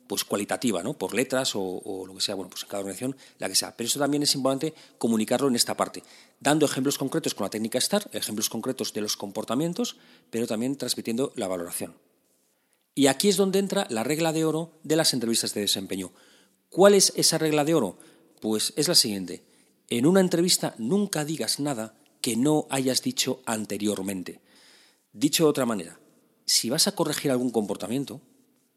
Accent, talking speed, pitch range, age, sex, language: Spanish, 185 wpm, 110-155 Hz, 40-59, male, Spanish